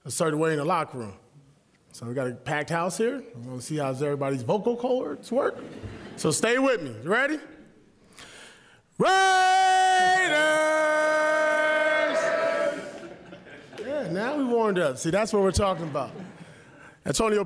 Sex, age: male, 20-39